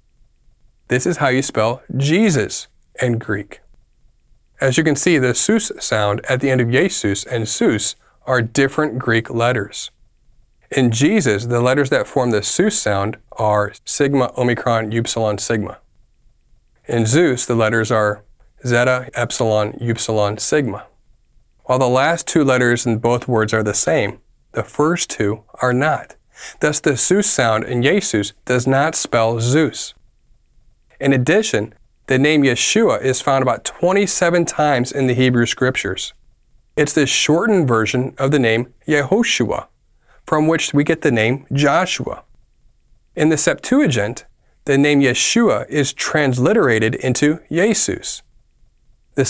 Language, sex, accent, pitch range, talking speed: English, male, American, 115-150 Hz, 140 wpm